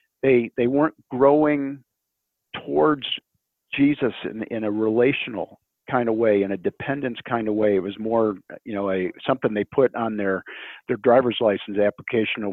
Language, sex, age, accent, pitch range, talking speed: English, male, 50-69, American, 95-115 Hz, 170 wpm